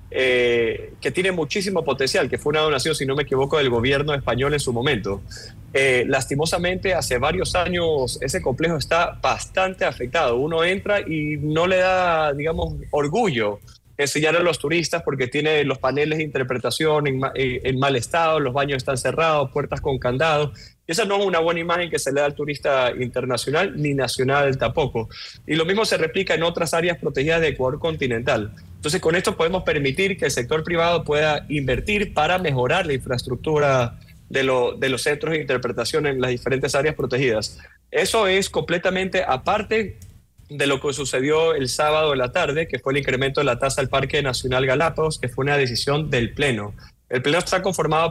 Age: 30-49